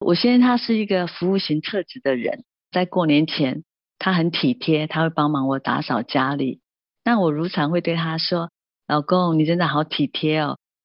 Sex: female